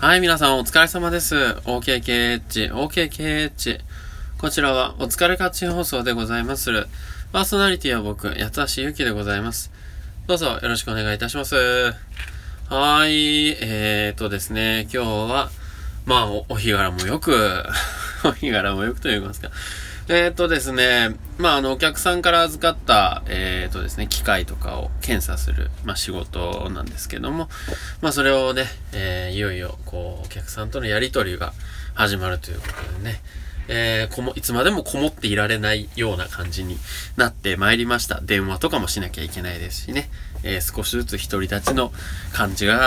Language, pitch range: Japanese, 85-130 Hz